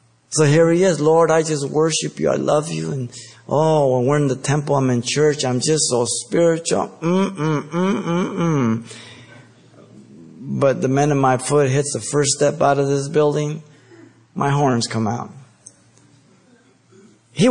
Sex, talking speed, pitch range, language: male, 160 wpm, 120-170 Hz, English